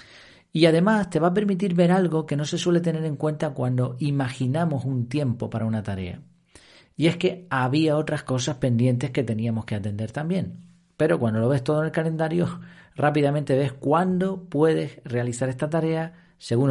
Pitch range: 120-160 Hz